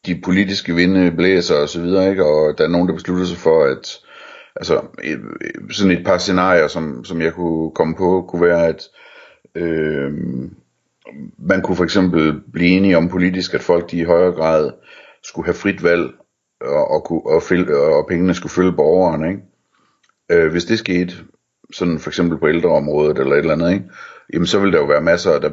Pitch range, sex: 80-95 Hz, male